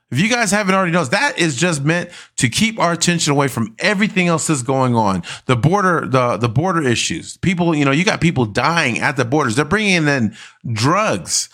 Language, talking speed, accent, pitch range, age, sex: English, 215 wpm, American, 125-170 Hz, 40-59, male